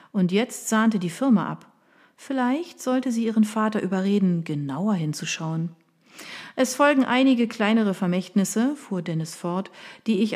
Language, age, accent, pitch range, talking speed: German, 40-59, German, 170-235 Hz, 140 wpm